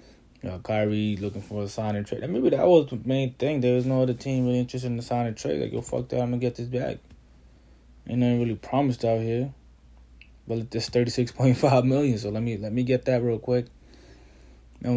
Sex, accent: male, American